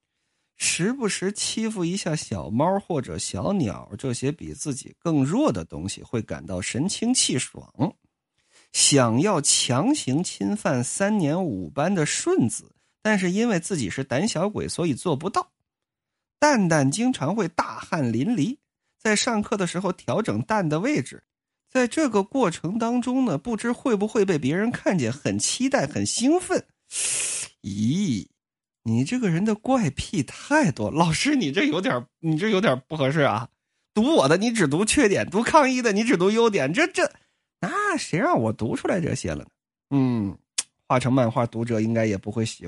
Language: Chinese